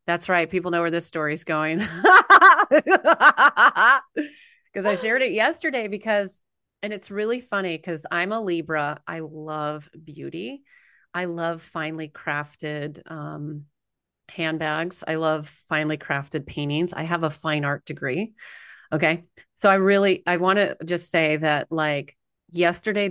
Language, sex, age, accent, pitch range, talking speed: English, female, 30-49, American, 155-195 Hz, 140 wpm